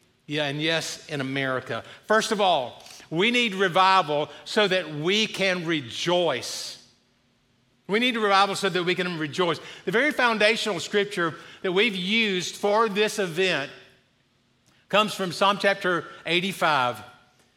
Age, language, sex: 50-69, English, male